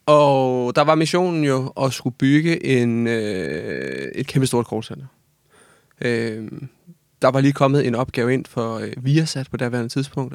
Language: Danish